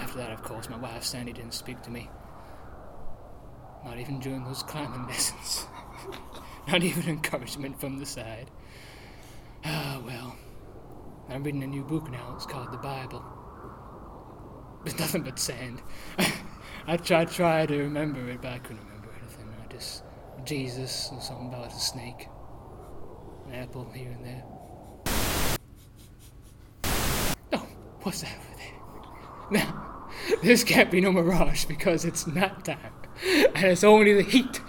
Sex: male